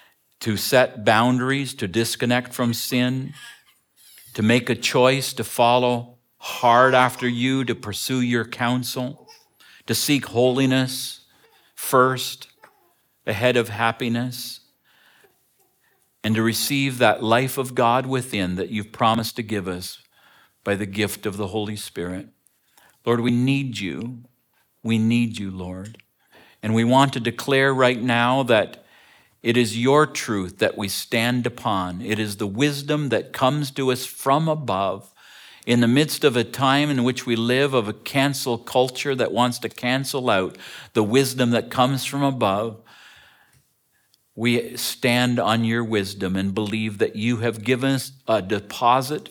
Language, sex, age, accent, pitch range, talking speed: English, male, 50-69, American, 105-130 Hz, 145 wpm